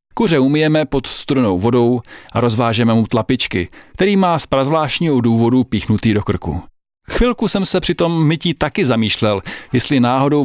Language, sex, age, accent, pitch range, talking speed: Czech, male, 40-59, native, 110-155 Hz, 150 wpm